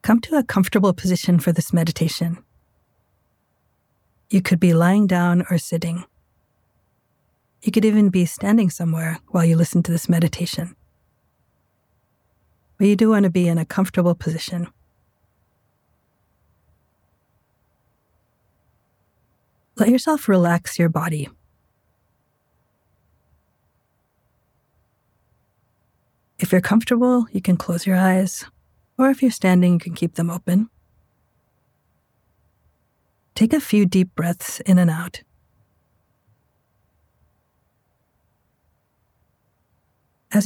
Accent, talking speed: American, 100 wpm